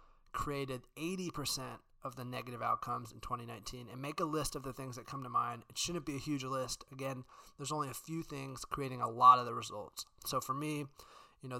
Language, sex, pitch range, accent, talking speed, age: English, male, 125-140 Hz, American, 215 wpm, 20-39